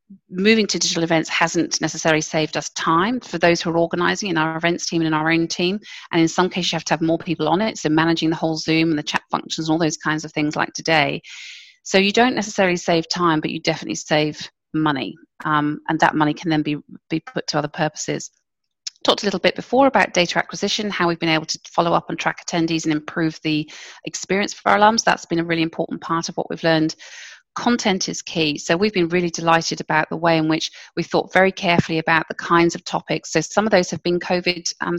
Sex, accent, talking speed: female, British, 240 wpm